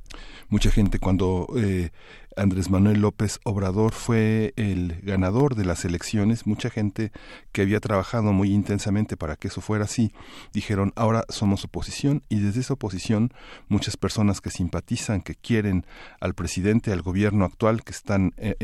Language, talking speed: Spanish, 155 wpm